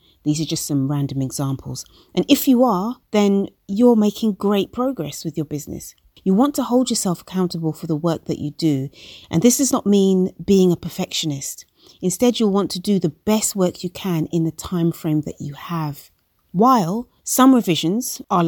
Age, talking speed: 30-49, 190 wpm